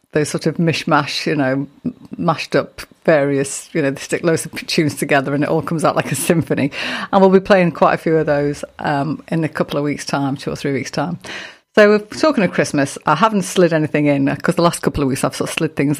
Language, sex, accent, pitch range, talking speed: English, female, British, 150-180 Hz, 250 wpm